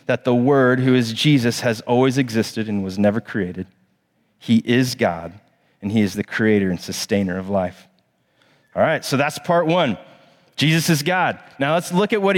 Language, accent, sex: English, American, male